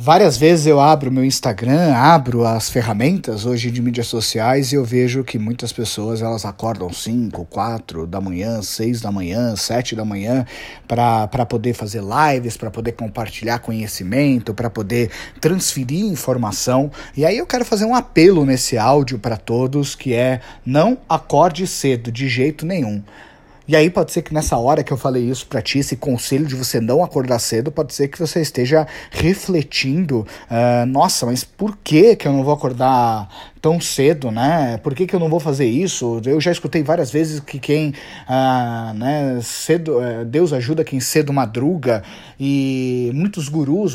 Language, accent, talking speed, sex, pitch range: Portuguese, Brazilian, 175 wpm, male, 120-165 Hz